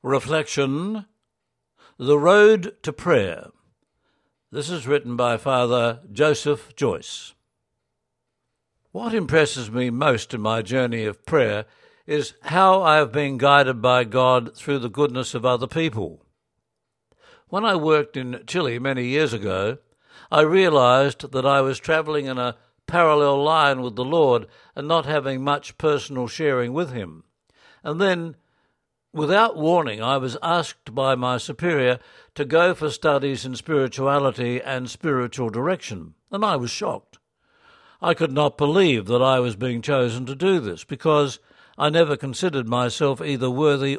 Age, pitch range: 60-79, 125-155 Hz